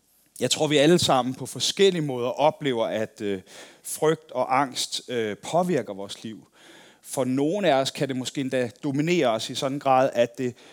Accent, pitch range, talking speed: native, 130-170 Hz, 180 wpm